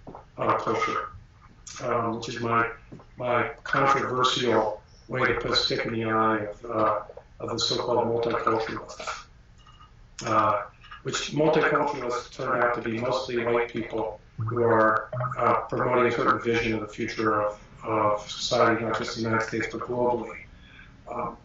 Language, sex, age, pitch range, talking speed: English, male, 40-59, 115-150 Hz, 150 wpm